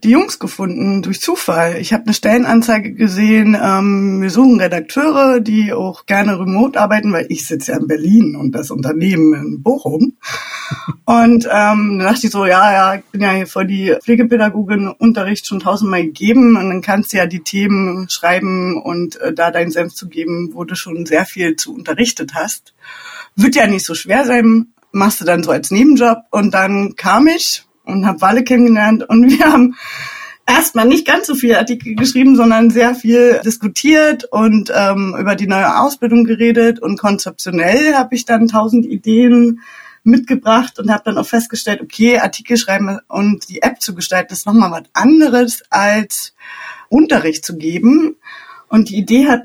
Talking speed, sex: 180 wpm, female